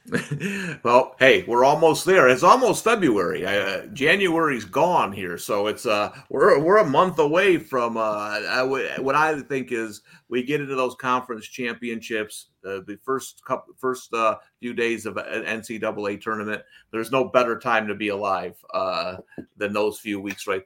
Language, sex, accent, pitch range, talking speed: English, male, American, 110-135 Hz, 165 wpm